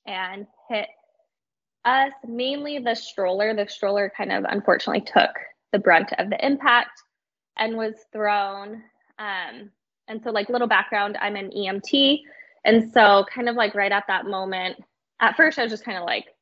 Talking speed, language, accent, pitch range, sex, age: 170 wpm, English, American, 200-240 Hz, female, 10-29